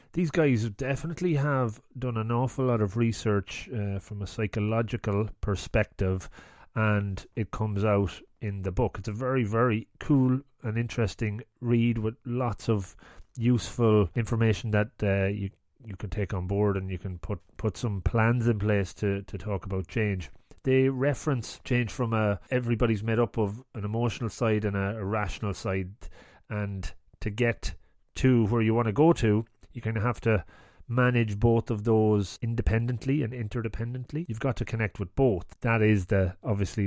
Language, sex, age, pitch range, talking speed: English, male, 30-49, 100-120 Hz, 170 wpm